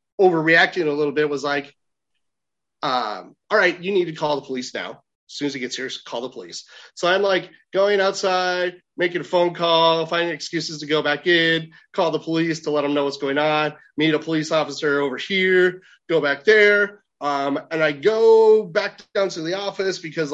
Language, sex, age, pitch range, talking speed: English, male, 30-49, 155-205 Hz, 205 wpm